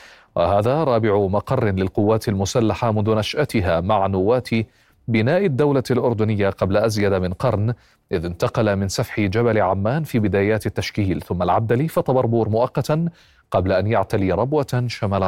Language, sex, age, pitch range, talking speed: Arabic, male, 40-59, 100-125 Hz, 135 wpm